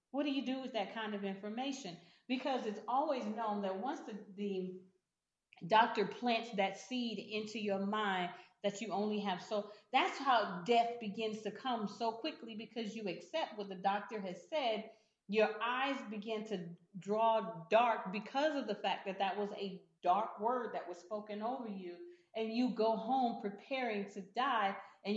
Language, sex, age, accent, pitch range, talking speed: English, female, 40-59, American, 200-245 Hz, 175 wpm